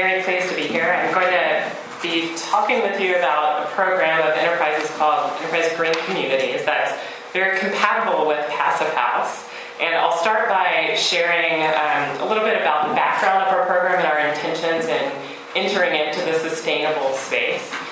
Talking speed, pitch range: 170 wpm, 150-190 Hz